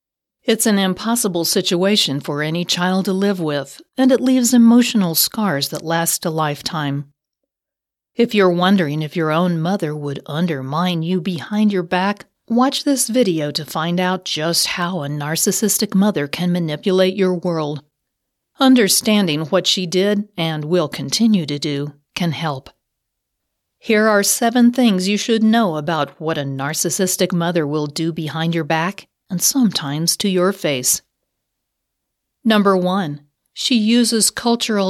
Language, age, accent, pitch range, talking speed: English, 50-69, American, 160-210 Hz, 145 wpm